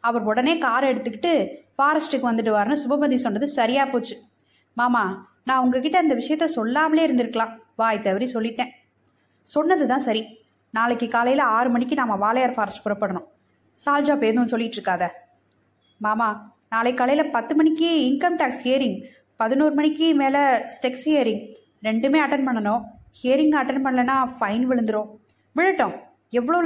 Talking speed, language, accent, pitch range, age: 130 wpm, Tamil, native, 220-290 Hz, 20-39